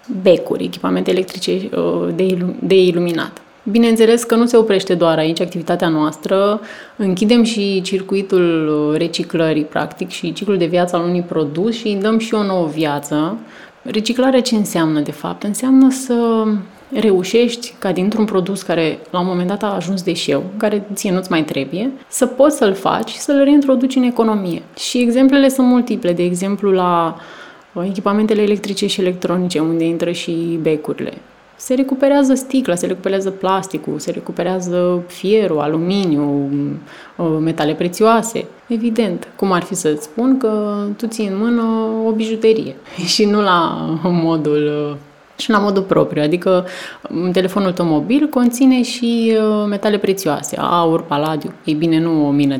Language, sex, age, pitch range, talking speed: Romanian, female, 30-49, 170-225 Hz, 145 wpm